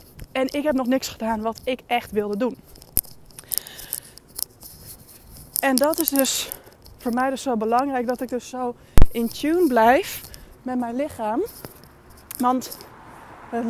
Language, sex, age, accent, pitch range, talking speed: Dutch, female, 20-39, Dutch, 225-270 Hz, 140 wpm